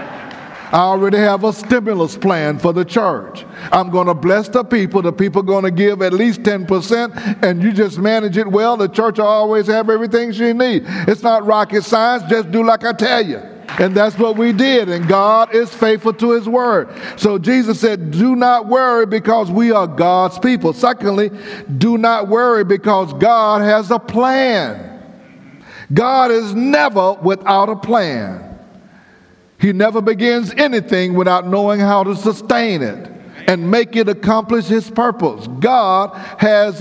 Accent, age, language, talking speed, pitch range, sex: American, 50-69, English, 170 wpm, 195-230 Hz, male